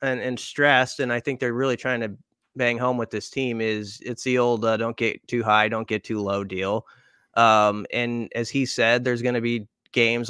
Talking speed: 225 wpm